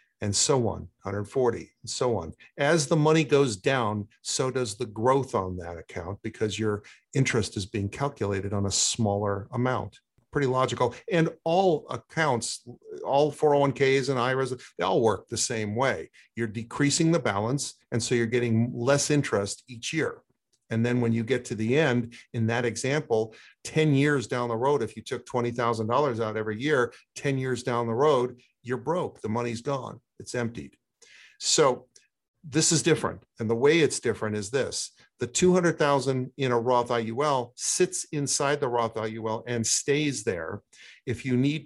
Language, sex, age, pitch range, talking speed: English, male, 50-69, 115-140 Hz, 170 wpm